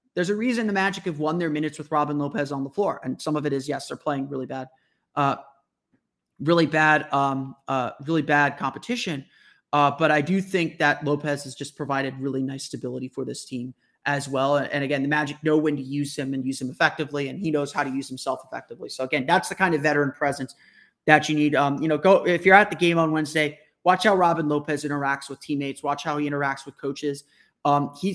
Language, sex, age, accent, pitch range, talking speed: English, male, 30-49, American, 140-170 Hz, 230 wpm